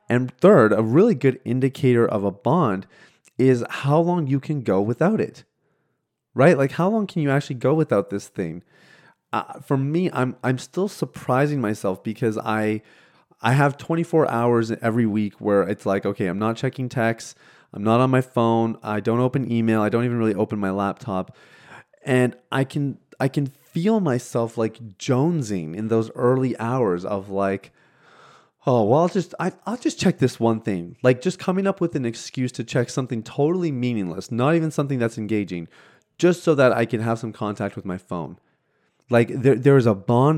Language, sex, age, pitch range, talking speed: English, male, 30-49, 110-145 Hz, 190 wpm